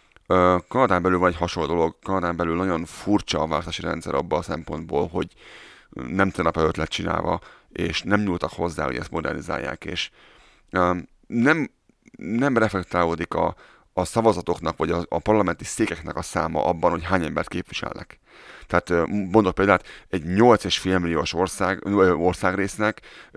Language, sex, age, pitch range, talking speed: Hungarian, male, 30-49, 85-95 Hz, 145 wpm